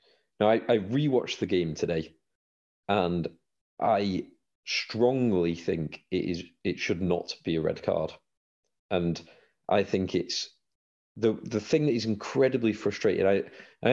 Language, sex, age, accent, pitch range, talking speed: English, male, 40-59, British, 90-125 Hz, 140 wpm